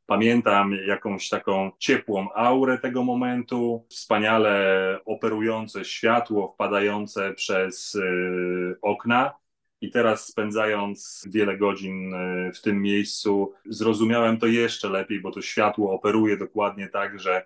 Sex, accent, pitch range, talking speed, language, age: male, native, 100-115 Hz, 110 wpm, Polish, 30-49